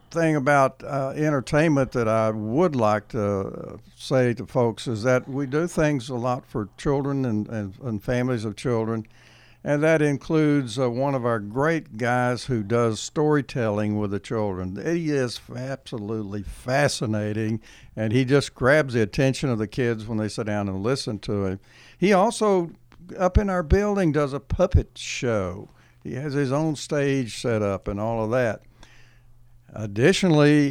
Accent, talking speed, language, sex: American, 165 wpm, English, male